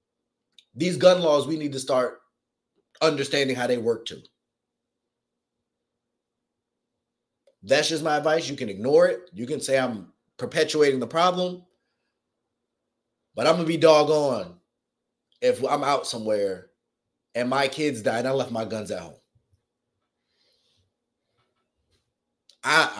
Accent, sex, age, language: American, male, 30-49, English